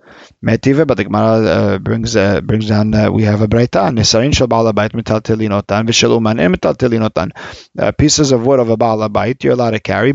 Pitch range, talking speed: 105-130 Hz, 195 wpm